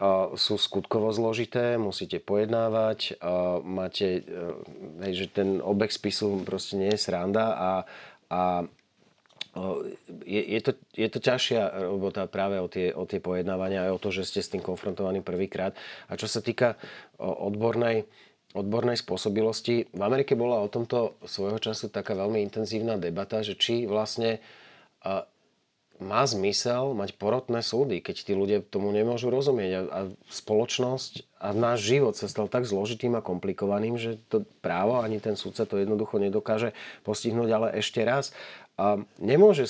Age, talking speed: 40-59, 155 wpm